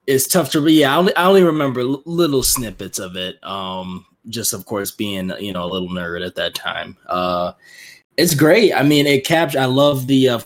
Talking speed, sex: 210 wpm, male